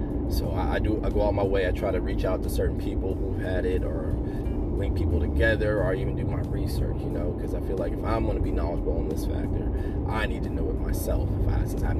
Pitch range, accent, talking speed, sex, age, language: 85-100 Hz, American, 265 wpm, male, 20-39, English